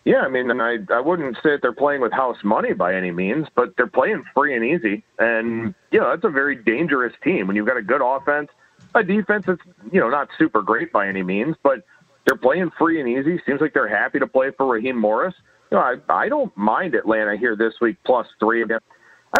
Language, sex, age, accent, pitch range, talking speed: English, male, 40-59, American, 115-185 Hz, 230 wpm